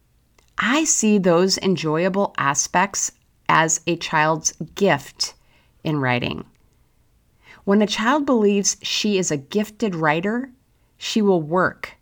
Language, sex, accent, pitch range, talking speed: English, female, American, 160-220 Hz, 115 wpm